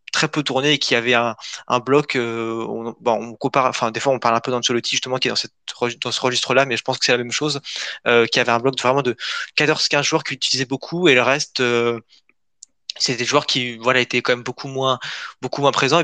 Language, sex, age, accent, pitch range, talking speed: French, male, 20-39, French, 115-135 Hz, 250 wpm